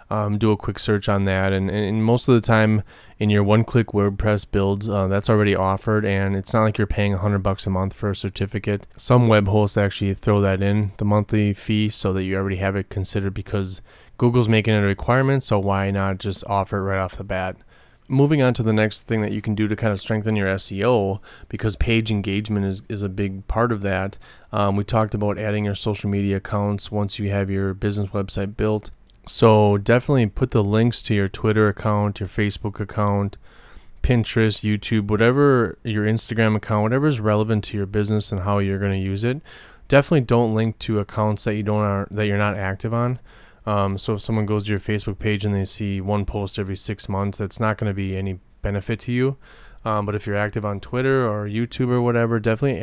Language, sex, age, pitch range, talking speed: English, male, 20-39, 100-110 Hz, 220 wpm